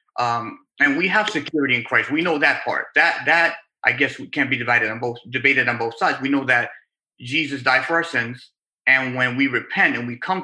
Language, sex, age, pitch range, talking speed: English, male, 30-49, 130-160 Hz, 230 wpm